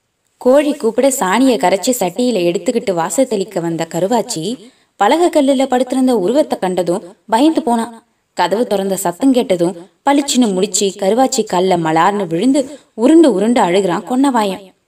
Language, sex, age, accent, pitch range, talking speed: Tamil, female, 20-39, native, 190-260 Hz, 125 wpm